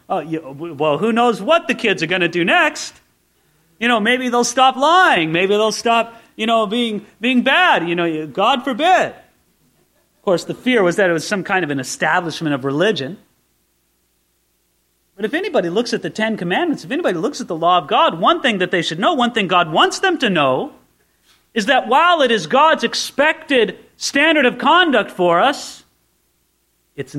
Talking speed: 190 wpm